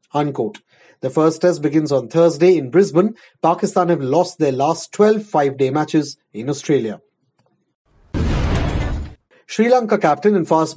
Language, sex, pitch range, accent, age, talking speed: English, male, 145-180 Hz, Indian, 30-49, 135 wpm